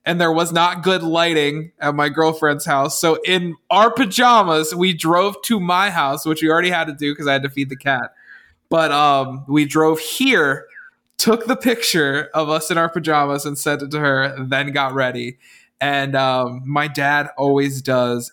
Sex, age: male, 20-39